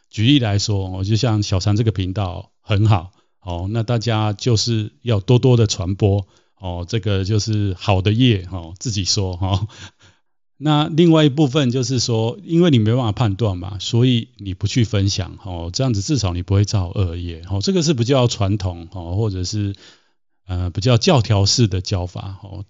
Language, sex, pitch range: Chinese, male, 95-125 Hz